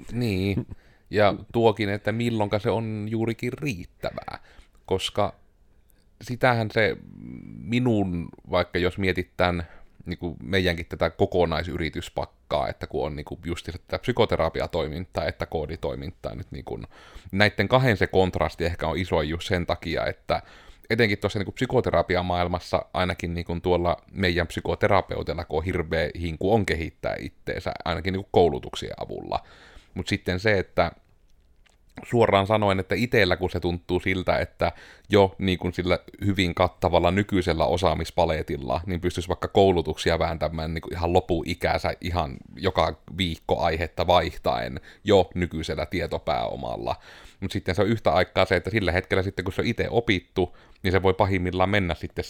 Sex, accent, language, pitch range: male, native, Finnish, 85-100 Hz